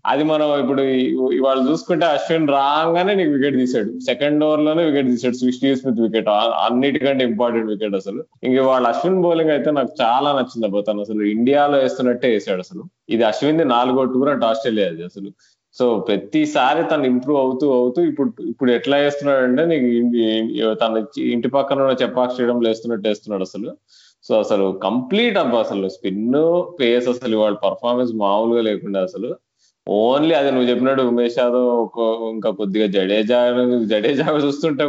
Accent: native